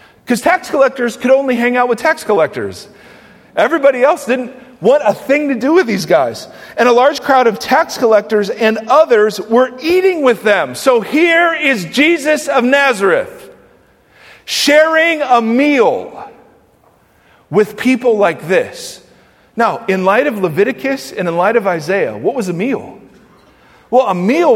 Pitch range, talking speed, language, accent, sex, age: 220-305 Hz, 155 wpm, English, American, male, 40-59